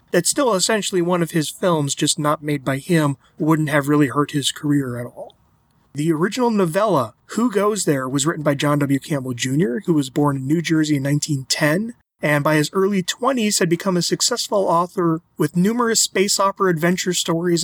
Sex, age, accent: male, 30-49, American